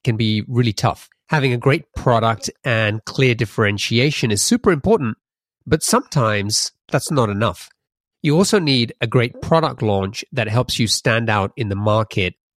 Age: 30-49